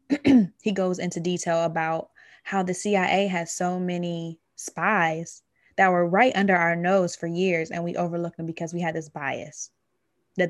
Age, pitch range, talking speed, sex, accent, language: 20-39, 165-190 Hz, 170 wpm, female, American, English